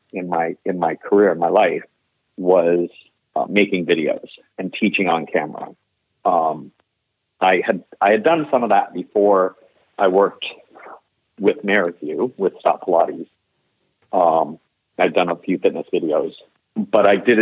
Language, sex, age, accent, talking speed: English, male, 50-69, American, 150 wpm